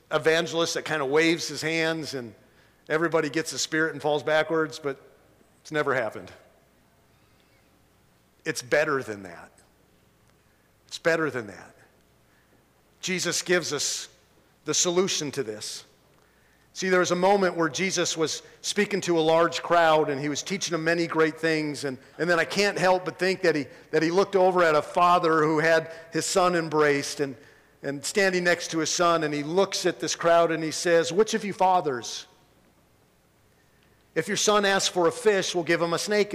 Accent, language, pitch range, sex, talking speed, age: American, English, 150-185 Hz, male, 180 wpm, 50-69